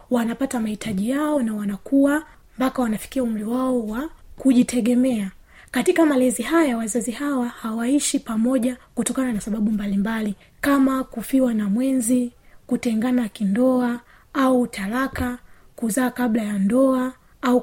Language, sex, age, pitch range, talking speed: Swahili, female, 20-39, 225-260 Hz, 120 wpm